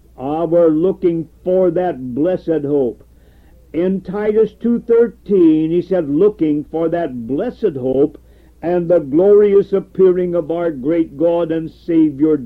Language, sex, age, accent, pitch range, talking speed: English, male, 60-79, American, 155-200 Hz, 130 wpm